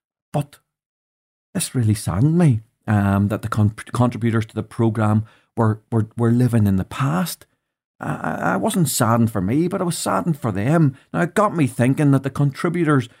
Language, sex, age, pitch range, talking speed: English, male, 30-49, 115-155 Hz, 180 wpm